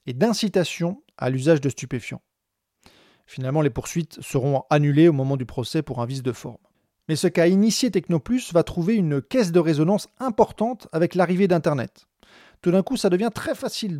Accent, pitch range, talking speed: French, 140-185 Hz, 180 wpm